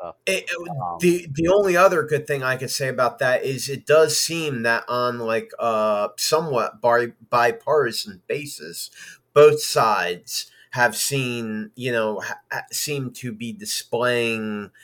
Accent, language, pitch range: American, English, 100-120 Hz